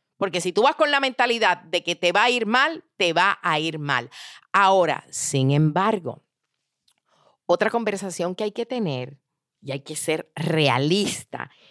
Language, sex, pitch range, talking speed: Spanish, female, 155-230 Hz, 170 wpm